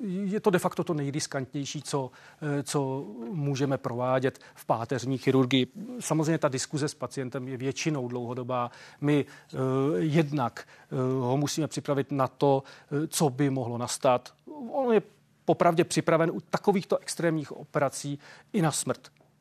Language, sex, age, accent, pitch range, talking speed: Czech, male, 40-59, native, 135-165 Hz, 135 wpm